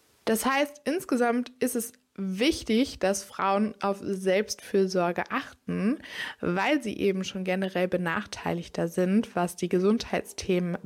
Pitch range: 185-235 Hz